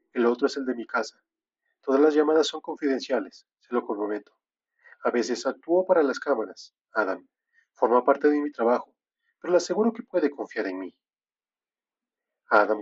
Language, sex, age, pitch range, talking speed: Spanish, male, 40-59, 125-175 Hz, 170 wpm